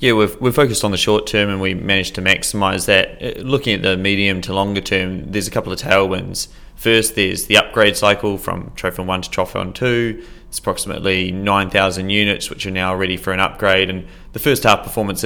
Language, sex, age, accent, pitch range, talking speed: English, male, 20-39, Australian, 95-105 Hz, 205 wpm